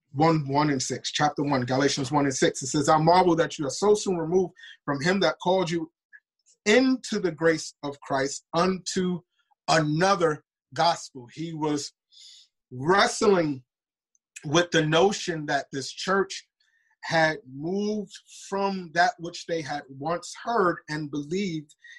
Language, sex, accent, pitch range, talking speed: English, male, American, 145-185 Hz, 145 wpm